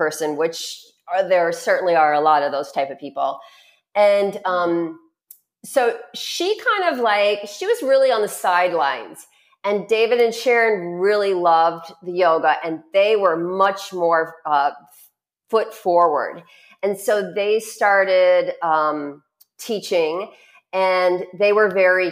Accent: American